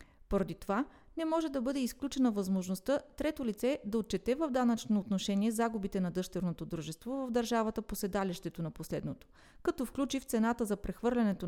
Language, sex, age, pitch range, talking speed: Bulgarian, female, 30-49, 190-250 Hz, 160 wpm